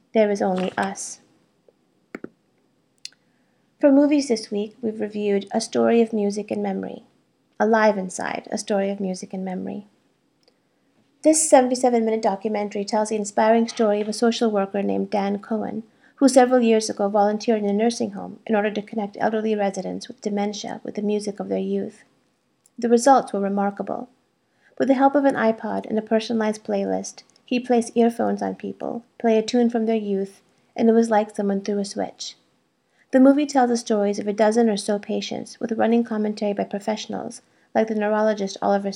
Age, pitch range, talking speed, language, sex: 30-49, 200-230 Hz, 175 wpm, English, female